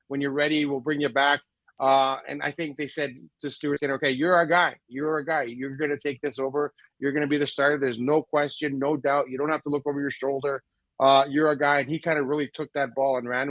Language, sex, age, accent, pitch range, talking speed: English, male, 30-49, American, 135-165 Hz, 275 wpm